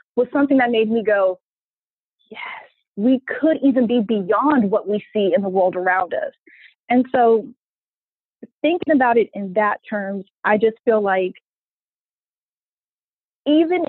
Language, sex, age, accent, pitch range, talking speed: English, female, 20-39, American, 195-245 Hz, 145 wpm